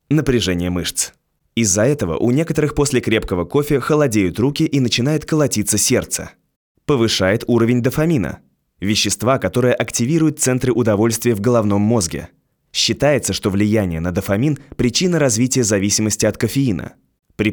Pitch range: 100-130 Hz